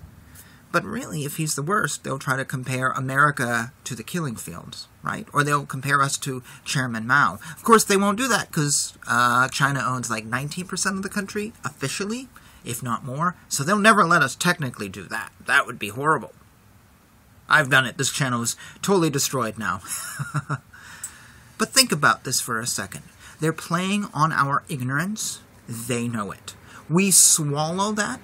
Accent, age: American, 30-49